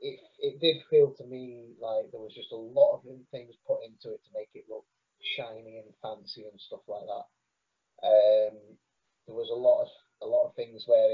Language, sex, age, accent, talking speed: English, male, 30-49, British, 210 wpm